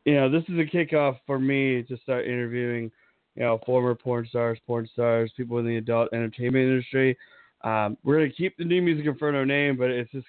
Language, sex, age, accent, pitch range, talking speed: English, male, 20-39, American, 120-140 Hz, 210 wpm